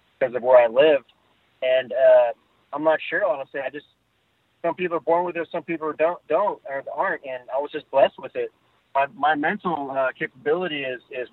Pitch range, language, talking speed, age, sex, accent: 130-160 Hz, English, 205 wpm, 30-49, male, American